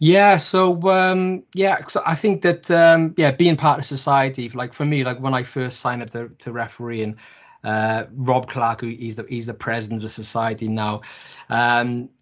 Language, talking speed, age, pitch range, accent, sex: English, 195 wpm, 20-39, 115-135 Hz, British, male